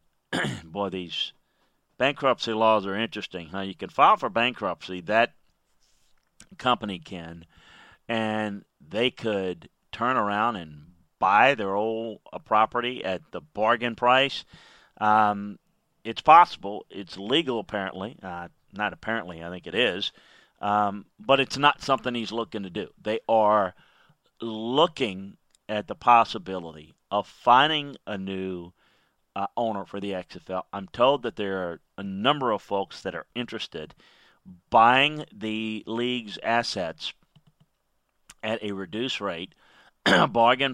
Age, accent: 40-59, American